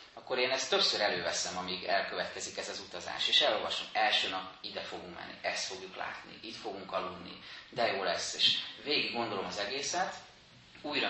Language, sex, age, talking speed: Hungarian, male, 30-49, 175 wpm